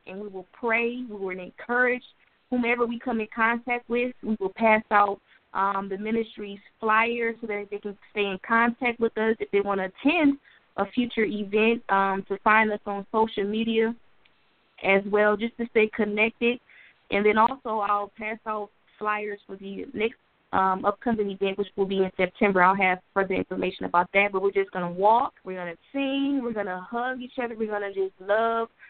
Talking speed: 200 wpm